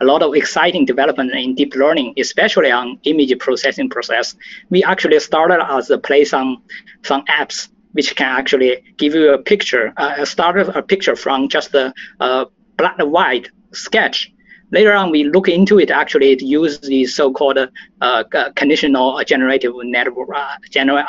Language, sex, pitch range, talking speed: English, male, 140-225 Hz, 170 wpm